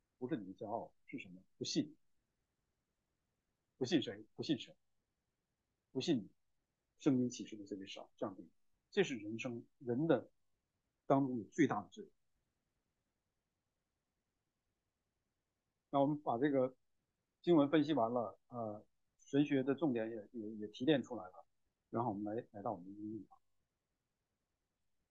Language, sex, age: English, male, 50-69